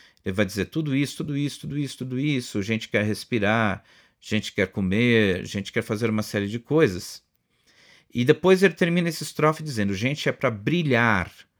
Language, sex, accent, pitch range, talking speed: Portuguese, male, Brazilian, 100-125 Hz, 180 wpm